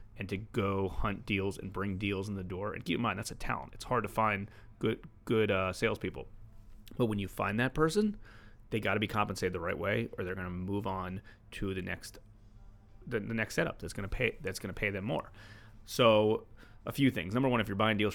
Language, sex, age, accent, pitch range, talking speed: English, male, 30-49, American, 95-110 Hz, 240 wpm